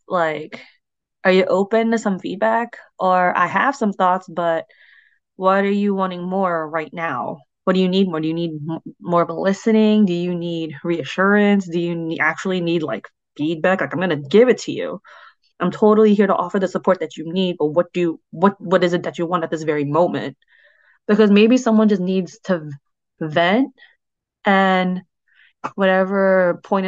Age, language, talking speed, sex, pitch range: 20-39, English, 185 wpm, female, 175-205 Hz